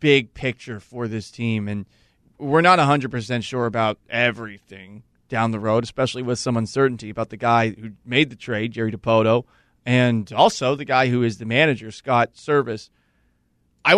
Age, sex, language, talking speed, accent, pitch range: 30-49, male, English, 170 wpm, American, 120-150 Hz